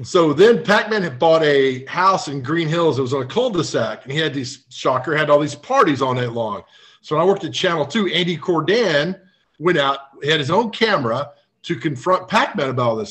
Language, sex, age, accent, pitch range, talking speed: English, male, 40-59, American, 145-195 Hz, 225 wpm